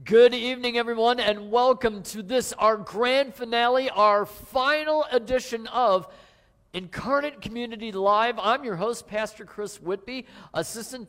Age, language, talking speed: 50-69, English, 130 wpm